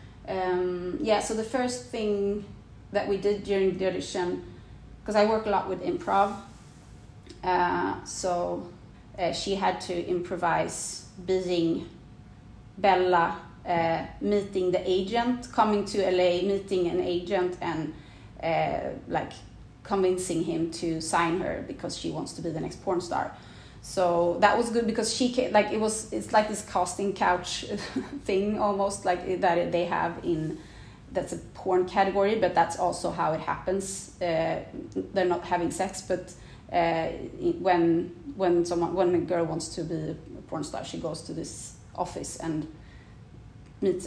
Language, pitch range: English, 165-200 Hz